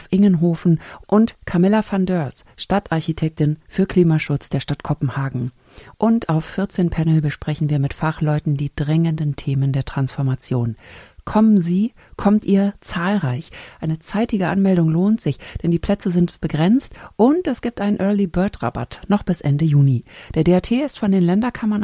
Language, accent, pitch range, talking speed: German, German, 140-190 Hz, 150 wpm